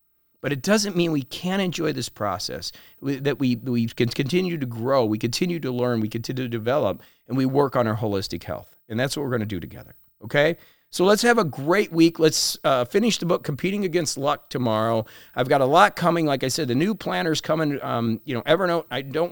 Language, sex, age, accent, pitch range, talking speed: English, male, 40-59, American, 125-165 Hz, 230 wpm